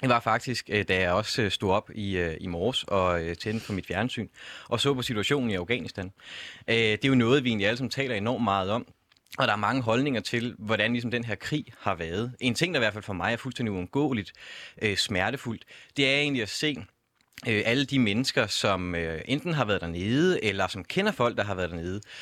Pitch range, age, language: 100-130 Hz, 30-49, Danish